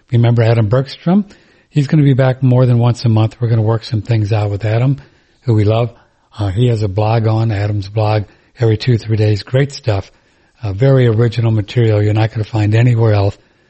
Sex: male